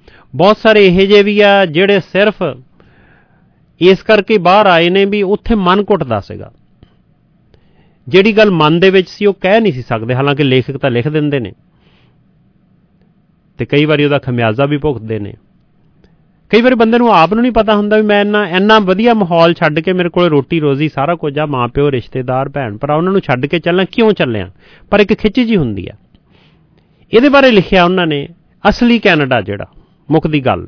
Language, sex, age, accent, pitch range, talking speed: English, male, 40-59, Indian, 145-195 Hz, 115 wpm